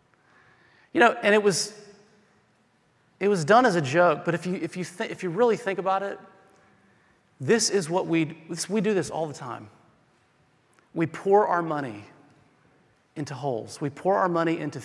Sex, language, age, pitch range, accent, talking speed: male, English, 40-59, 145-180 Hz, American, 180 wpm